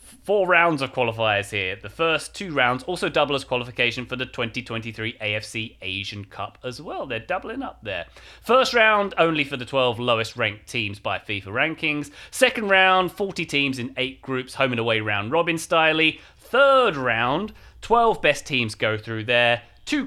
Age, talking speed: 30-49, 175 wpm